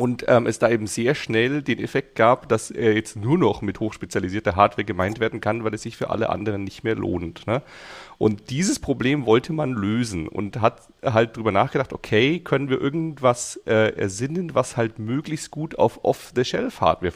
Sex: male